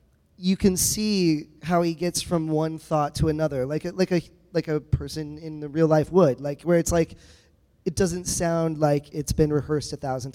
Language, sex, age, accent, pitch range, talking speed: English, male, 20-39, American, 145-170 Hz, 210 wpm